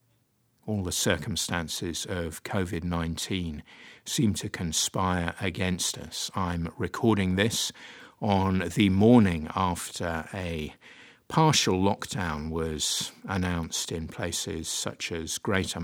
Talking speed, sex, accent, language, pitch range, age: 100 wpm, male, British, English, 90-110 Hz, 50-69